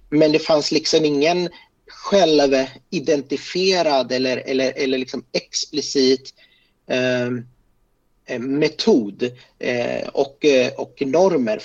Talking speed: 95 wpm